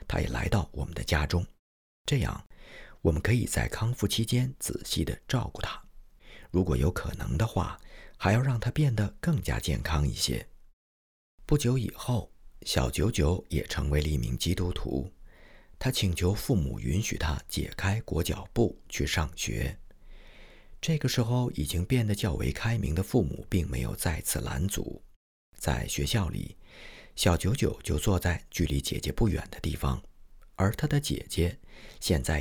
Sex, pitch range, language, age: male, 75-110 Hz, Chinese, 50-69